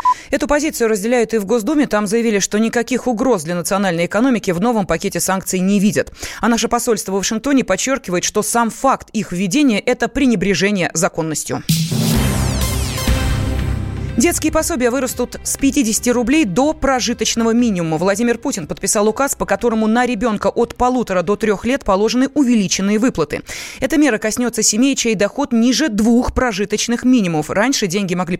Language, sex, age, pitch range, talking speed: Russian, female, 20-39, 190-245 Hz, 150 wpm